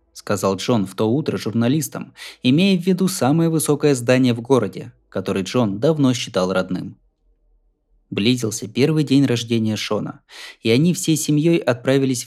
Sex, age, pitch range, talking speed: male, 20-39, 100-140 Hz, 140 wpm